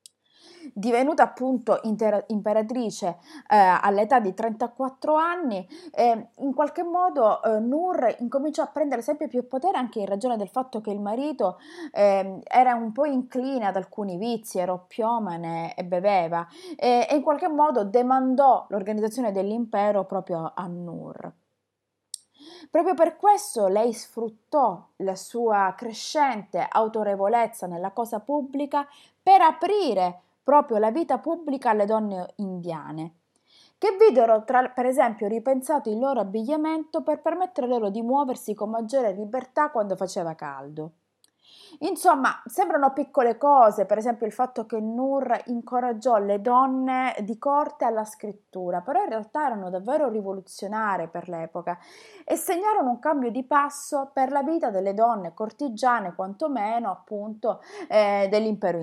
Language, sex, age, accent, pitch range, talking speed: Italian, female, 20-39, native, 205-290 Hz, 135 wpm